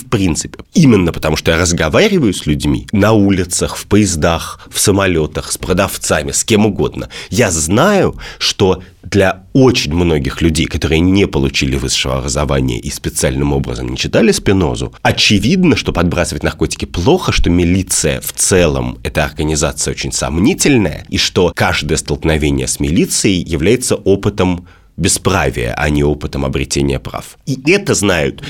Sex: male